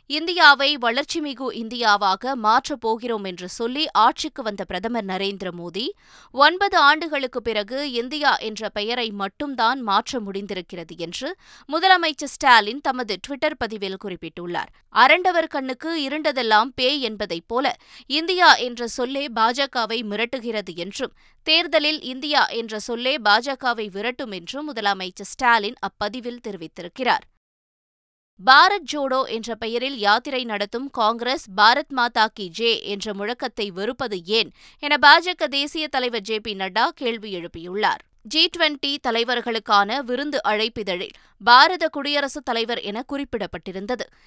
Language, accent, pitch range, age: Tamil, native, 210-285 Hz, 20-39